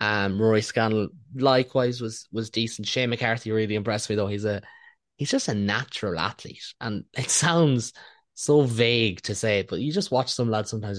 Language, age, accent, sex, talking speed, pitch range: English, 20-39, Irish, male, 185 wpm, 100-120 Hz